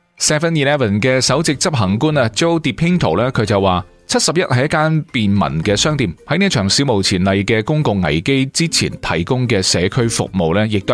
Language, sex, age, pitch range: Chinese, male, 30-49, 95-145 Hz